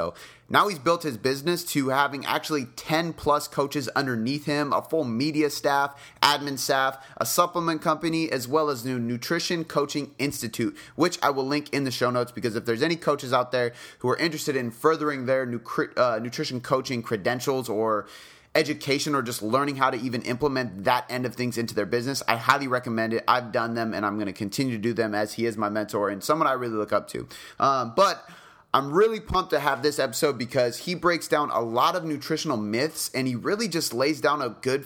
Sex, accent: male, American